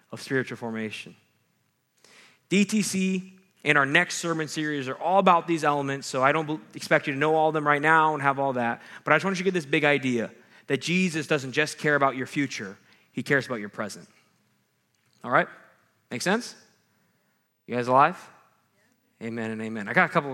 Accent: American